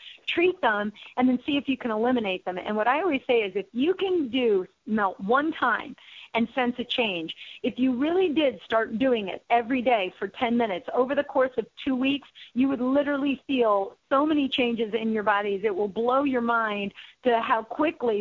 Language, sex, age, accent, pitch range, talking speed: English, female, 40-59, American, 215-275 Hz, 210 wpm